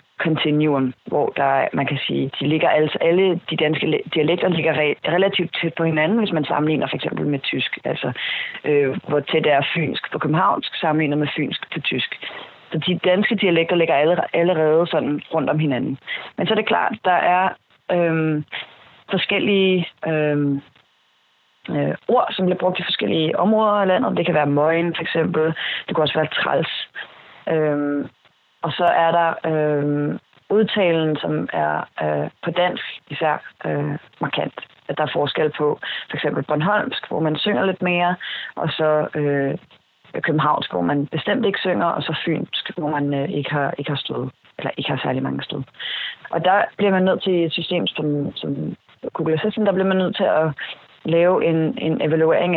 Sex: female